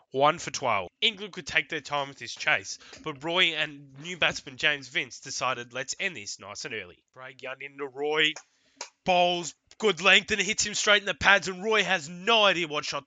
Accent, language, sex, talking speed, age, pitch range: Australian, English, male, 215 wpm, 20-39, 140-195 Hz